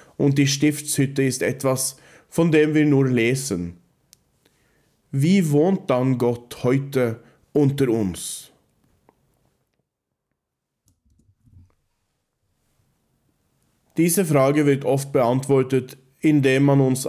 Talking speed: 90 wpm